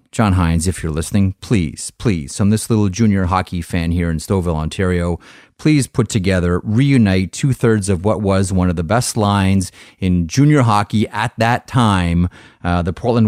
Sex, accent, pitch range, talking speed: male, American, 95-130 Hz, 175 wpm